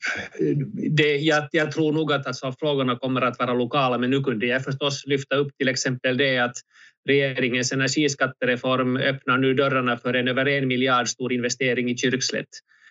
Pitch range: 115-135 Hz